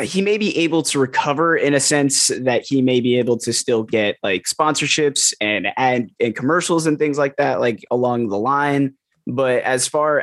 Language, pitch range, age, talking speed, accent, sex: English, 120-140 Hz, 20-39, 200 wpm, American, male